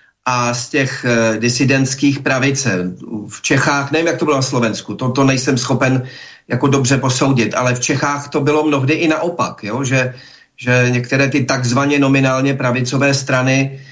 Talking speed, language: 165 wpm, Slovak